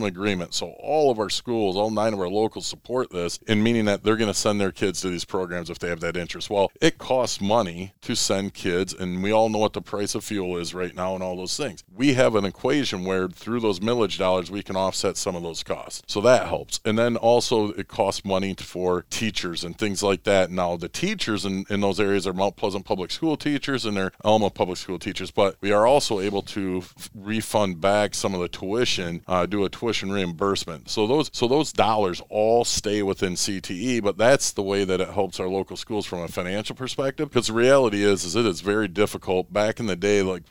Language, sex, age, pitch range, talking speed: English, male, 40-59, 90-105 Hz, 235 wpm